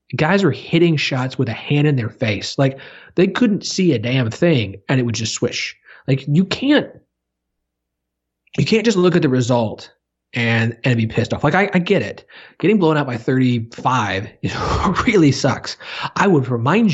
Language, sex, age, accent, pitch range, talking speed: English, male, 30-49, American, 120-155 Hz, 190 wpm